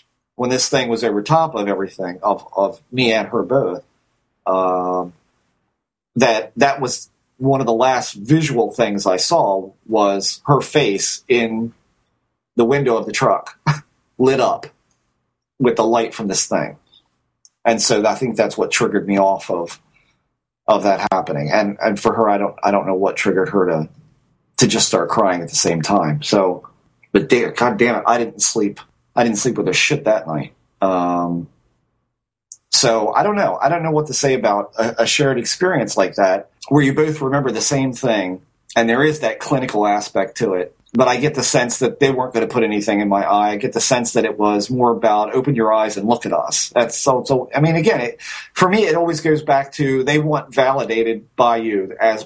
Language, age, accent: English, 30-49, American